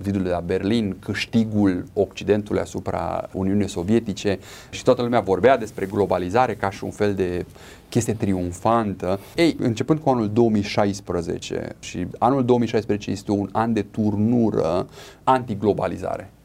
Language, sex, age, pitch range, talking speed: Romanian, male, 30-49, 95-125 Hz, 130 wpm